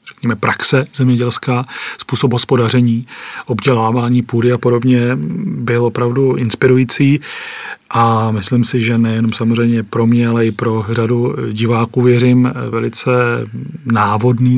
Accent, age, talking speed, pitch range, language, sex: native, 40-59, 115 wpm, 115-125 Hz, Czech, male